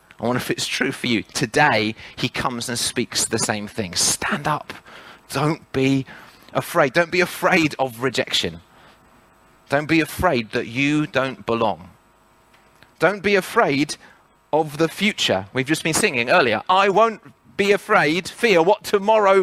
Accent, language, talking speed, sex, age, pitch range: British, English, 155 wpm, male, 30-49, 110-180 Hz